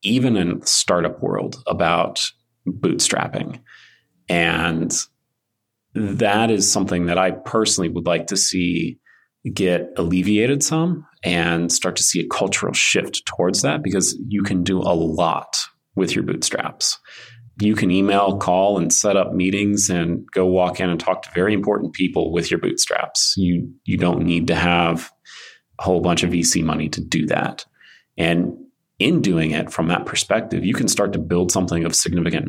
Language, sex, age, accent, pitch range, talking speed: English, male, 30-49, American, 85-100 Hz, 165 wpm